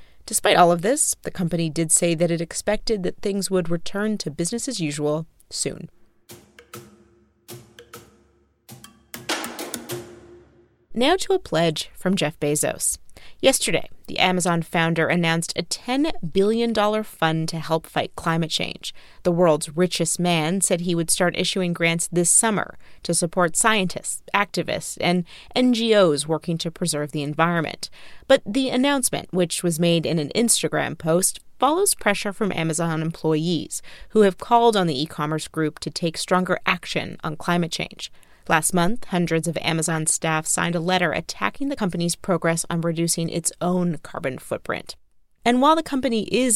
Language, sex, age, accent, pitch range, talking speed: English, female, 30-49, American, 165-205 Hz, 150 wpm